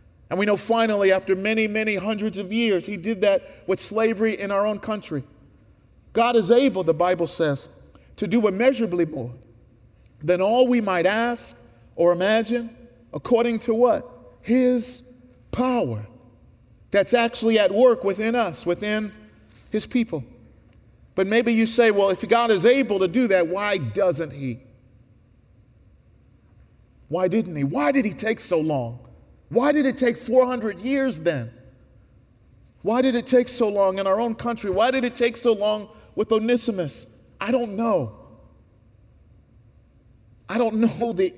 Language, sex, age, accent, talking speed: English, male, 40-59, American, 155 wpm